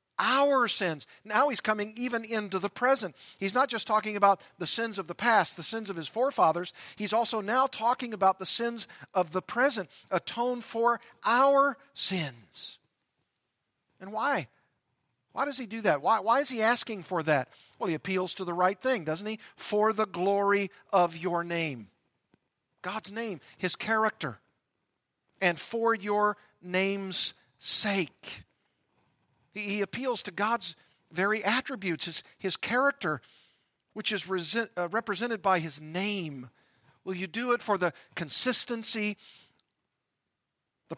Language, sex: English, male